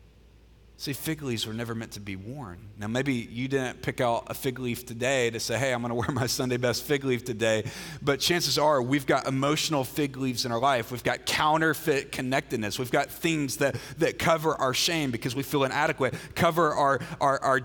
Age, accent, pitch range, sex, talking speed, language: 30-49, American, 125-155 Hz, male, 210 wpm, English